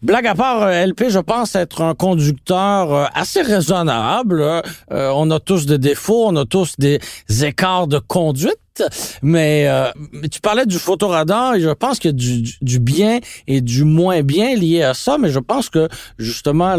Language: French